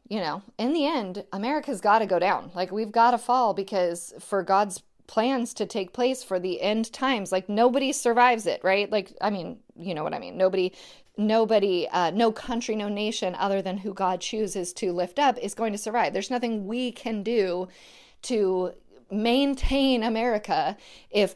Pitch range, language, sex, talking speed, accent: 185-240 Hz, English, female, 190 wpm, American